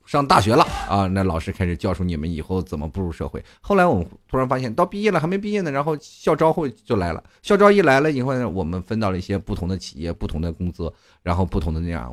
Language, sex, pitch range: Chinese, male, 80-105 Hz